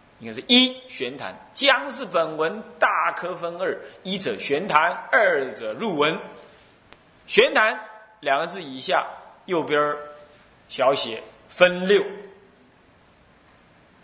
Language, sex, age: Chinese, male, 30-49